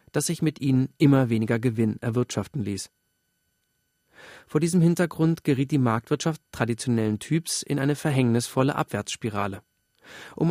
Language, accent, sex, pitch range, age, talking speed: German, German, male, 115-150 Hz, 40-59, 125 wpm